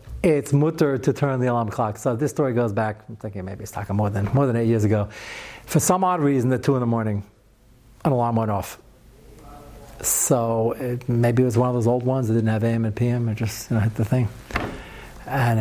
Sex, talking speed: male, 235 wpm